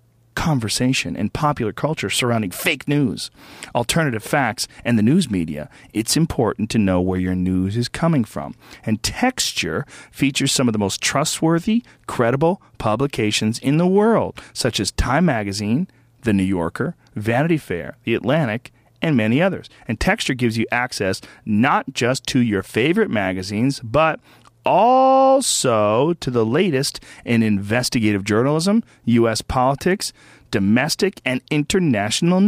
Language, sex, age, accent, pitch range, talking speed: English, male, 40-59, American, 110-150 Hz, 135 wpm